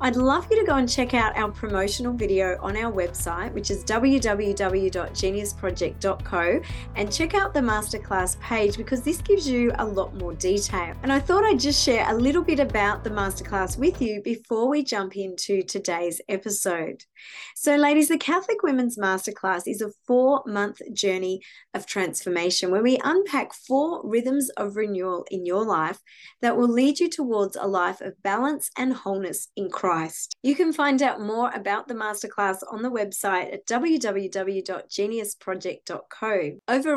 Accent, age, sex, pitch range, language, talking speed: Australian, 20-39, female, 195-265 Hz, English, 160 wpm